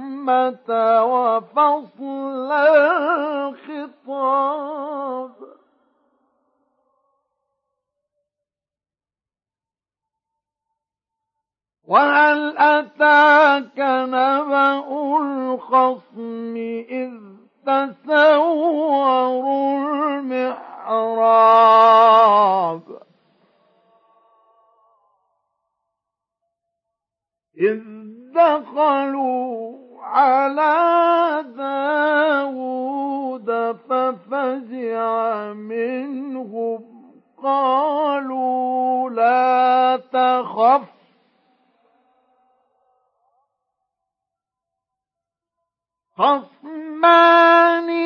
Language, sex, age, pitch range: Arabic, male, 50-69, 245-295 Hz